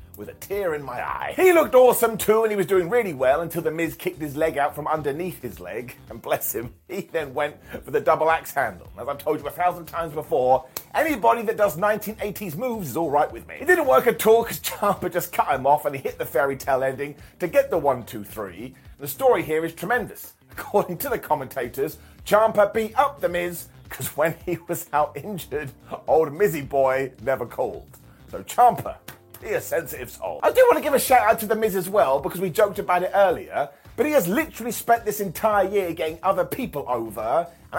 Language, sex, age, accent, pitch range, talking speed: English, male, 30-49, British, 150-215 Hz, 230 wpm